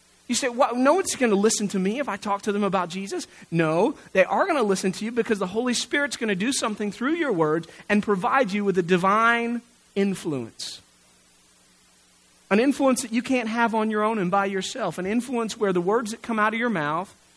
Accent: American